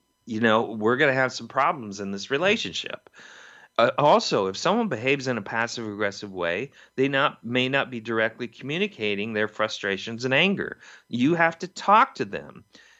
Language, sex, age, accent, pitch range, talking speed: English, male, 40-59, American, 115-180 Hz, 175 wpm